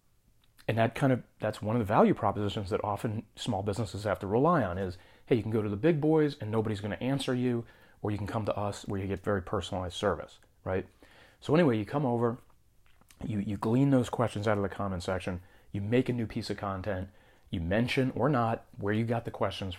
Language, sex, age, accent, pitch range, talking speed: English, male, 30-49, American, 100-125 Hz, 235 wpm